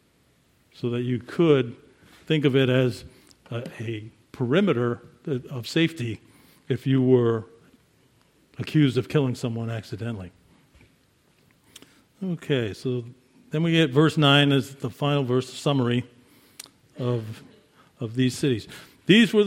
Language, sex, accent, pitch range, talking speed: English, male, American, 125-150 Hz, 120 wpm